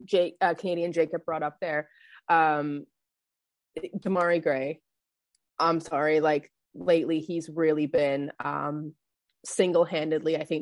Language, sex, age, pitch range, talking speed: English, female, 20-39, 150-175 Hz, 115 wpm